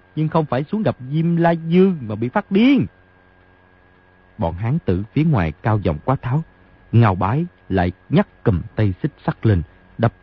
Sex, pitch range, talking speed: male, 90-135 Hz, 180 wpm